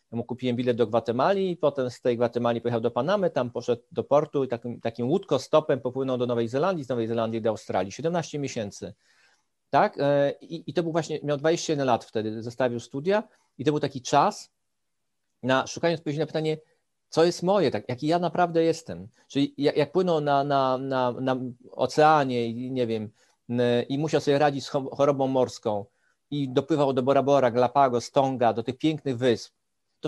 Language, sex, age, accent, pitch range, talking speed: Polish, male, 40-59, native, 125-160 Hz, 185 wpm